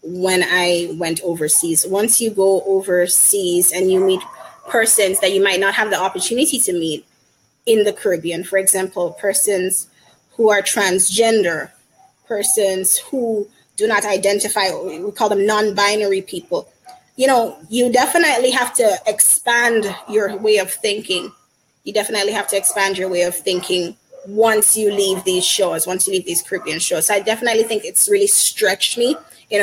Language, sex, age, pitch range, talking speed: English, female, 20-39, 180-220 Hz, 160 wpm